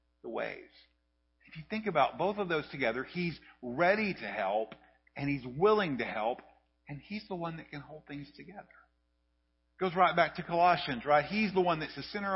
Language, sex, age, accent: English, male, 50-69, American